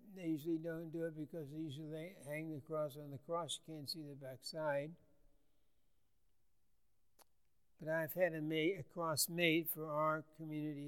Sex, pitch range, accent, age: male, 150-180 Hz, American, 60-79